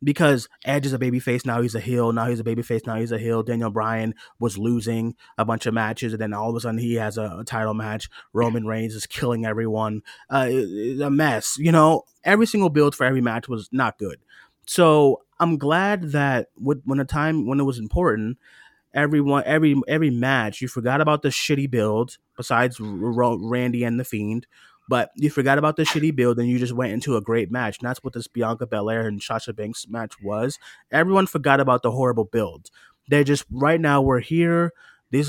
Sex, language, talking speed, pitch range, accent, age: male, English, 215 wpm, 115-145 Hz, American, 20-39